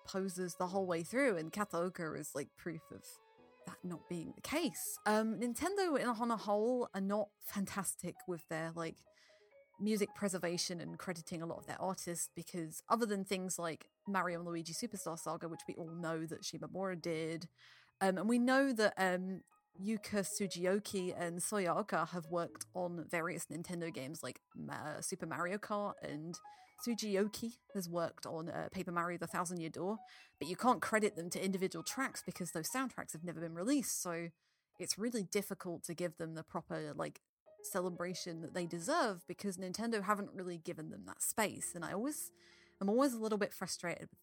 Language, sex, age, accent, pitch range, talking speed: English, female, 30-49, British, 170-205 Hz, 180 wpm